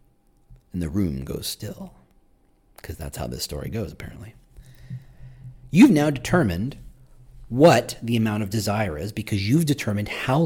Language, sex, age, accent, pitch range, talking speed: English, male, 40-59, American, 100-135 Hz, 145 wpm